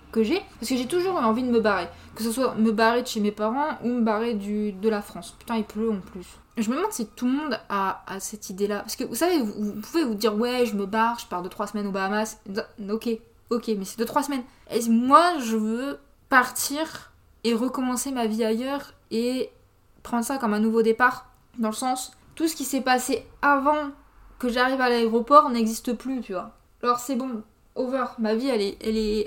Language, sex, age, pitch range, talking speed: French, female, 20-39, 215-255 Hz, 235 wpm